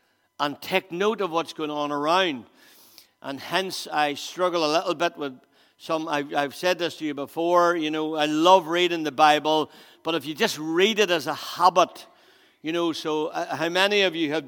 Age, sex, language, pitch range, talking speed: 60-79, male, English, 140-180 Hz, 205 wpm